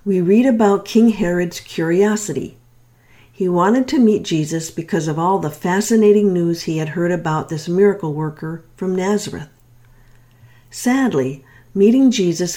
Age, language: 50-69, English